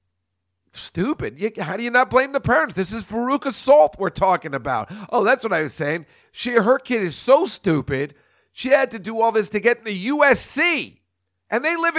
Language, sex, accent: English, male, American